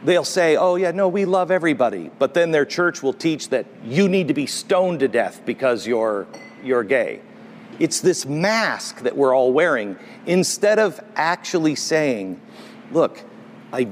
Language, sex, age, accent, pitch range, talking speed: English, male, 50-69, American, 150-210 Hz, 170 wpm